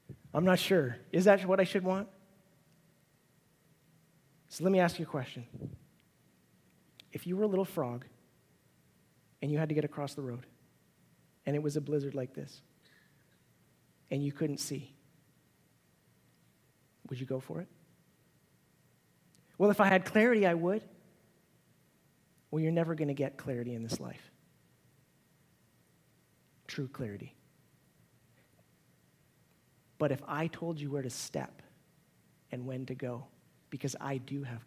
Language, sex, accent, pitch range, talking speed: English, male, American, 130-170 Hz, 140 wpm